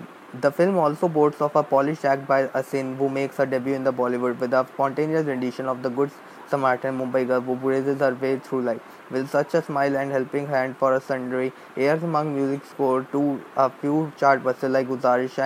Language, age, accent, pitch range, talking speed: English, 20-39, Indian, 130-140 Hz, 205 wpm